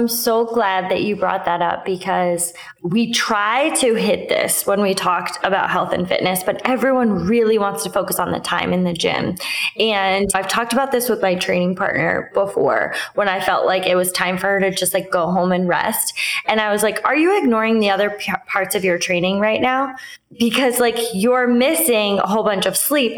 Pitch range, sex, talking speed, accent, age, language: 185-235 Hz, female, 215 wpm, American, 20-39, English